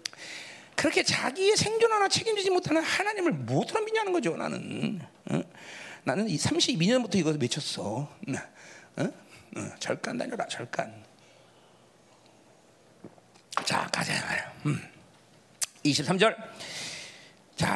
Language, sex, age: Korean, male, 40-59